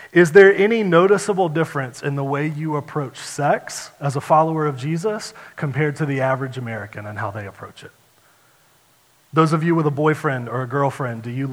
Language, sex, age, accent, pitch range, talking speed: English, male, 30-49, American, 130-165 Hz, 195 wpm